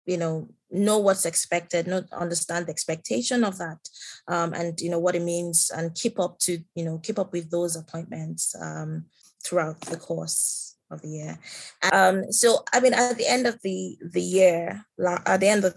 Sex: female